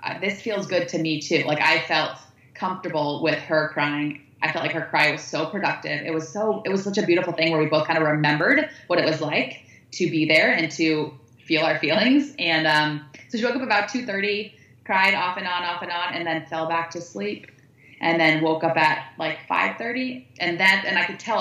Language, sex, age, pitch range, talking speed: English, female, 20-39, 150-190 Hz, 240 wpm